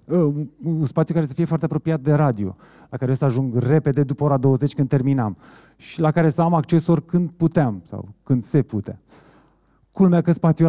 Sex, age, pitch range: male, 30-49, 115-160 Hz